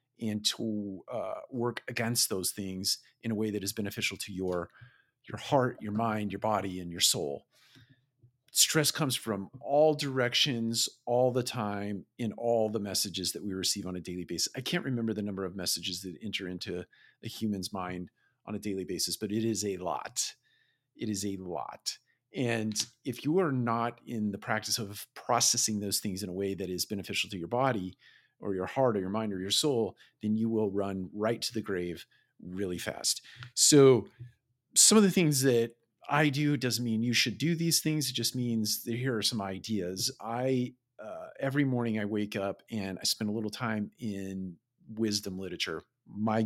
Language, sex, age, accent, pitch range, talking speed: English, male, 50-69, American, 100-120 Hz, 190 wpm